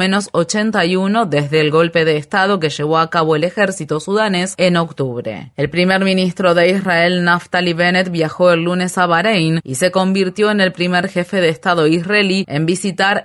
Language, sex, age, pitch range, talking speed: Spanish, female, 20-39, 160-185 Hz, 180 wpm